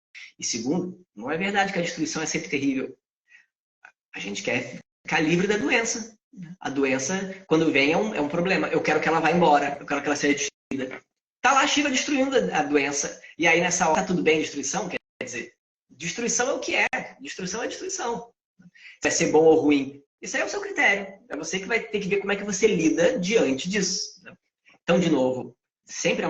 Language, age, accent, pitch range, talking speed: Portuguese, 20-39, Brazilian, 145-210 Hz, 210 wpm